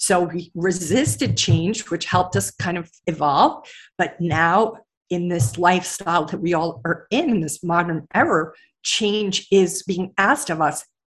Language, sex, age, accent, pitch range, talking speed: English, female, 50-69, American, 170-215 Hz, 155 wpm